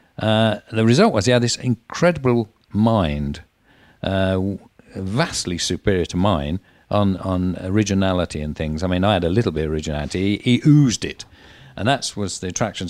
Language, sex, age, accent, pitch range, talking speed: English, male, 50-69, British, 85-110 Hz, 170 wpm